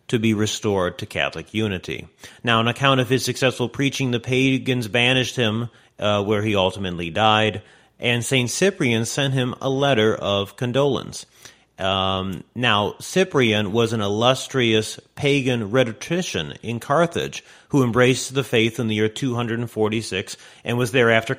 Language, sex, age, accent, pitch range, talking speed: English, male, 40-59, American, 110-130 Hz, 145 wpm